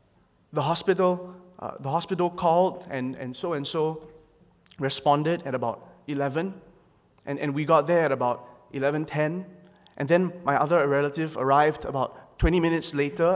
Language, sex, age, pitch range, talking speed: English, male, 20-39, 140-180 Hz, 140 wpm